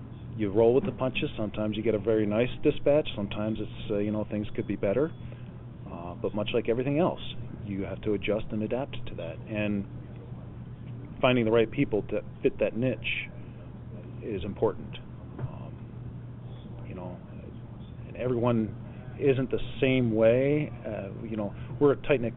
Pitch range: 105-120 Hz